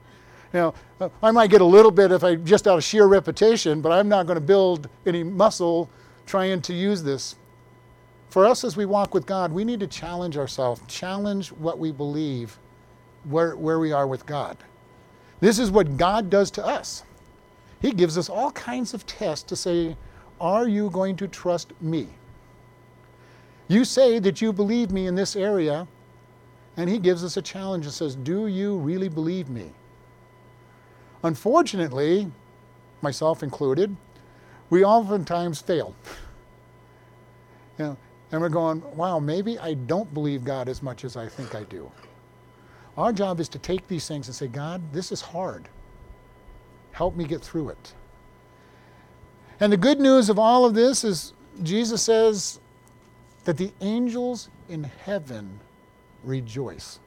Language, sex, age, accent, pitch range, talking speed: English, male, 50-69, American, 125-195 Hz, 155 wpm